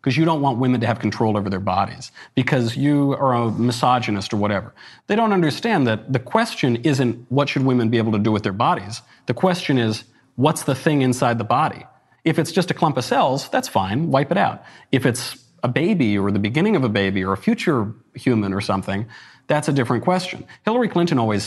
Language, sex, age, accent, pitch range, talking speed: English, male, 40-59, American, 110-150 Hz, 220 wpm